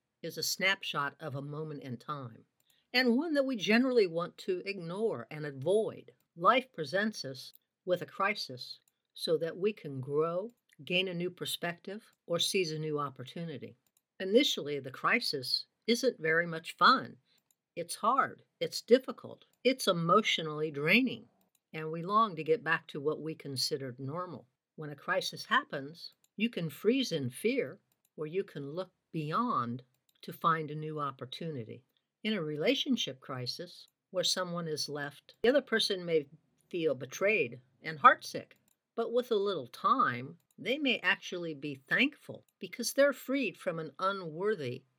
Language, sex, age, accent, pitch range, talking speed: English, female, 60-79, American, 145-210 Hz, 150 wpm